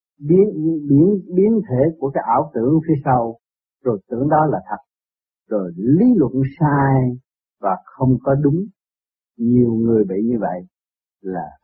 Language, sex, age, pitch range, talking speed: Vietnamese, male, 60-79, 130-180 Hz, 150 wpm